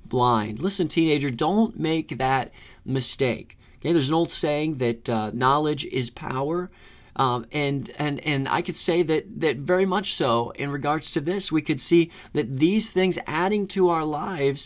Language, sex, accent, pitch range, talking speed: English, male, American, 120-155 Hz, 175 wpm